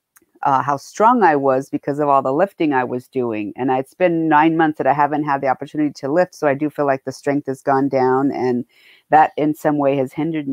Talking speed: 245 wpm